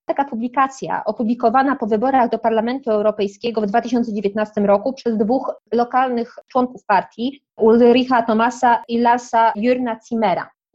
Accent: native